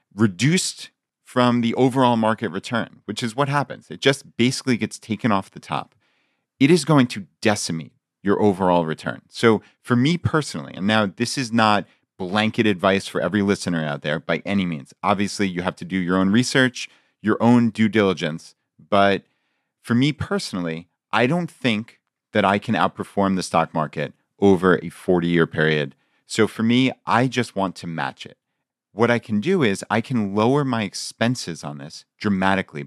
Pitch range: 90-115 Hz